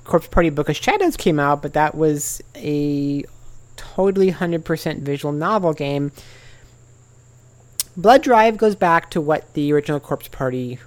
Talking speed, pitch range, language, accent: 145 wpm, 130-170 Hz, English, American